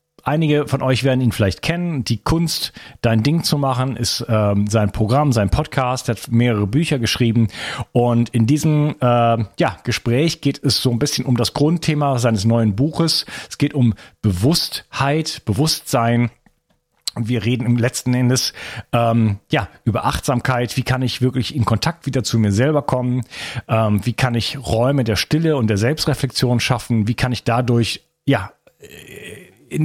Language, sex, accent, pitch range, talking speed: German, male, German, 115-140 Hz, 160 wpm